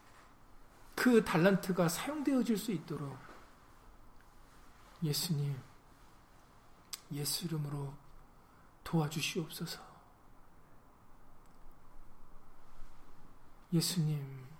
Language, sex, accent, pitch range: Korean, male, native, 140-185 Hz